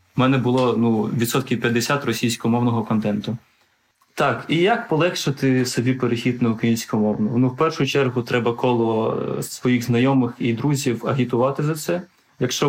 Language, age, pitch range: Ukrainian, 20-39, 115-130 Hz